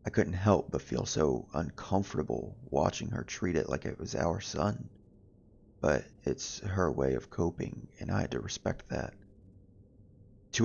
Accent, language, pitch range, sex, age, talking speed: American, English, 80-105 Hz, male, 30-49, 165 wpm